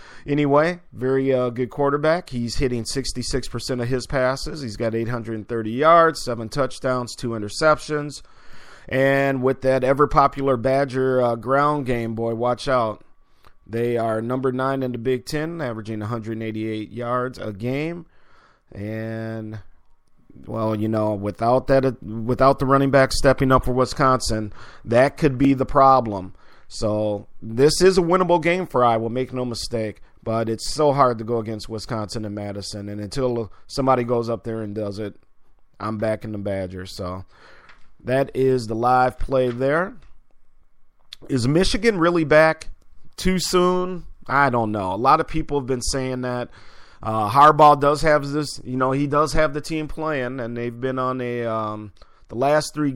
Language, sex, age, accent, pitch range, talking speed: English, male, 40-59, American, 115-140 Hz, 160 wpm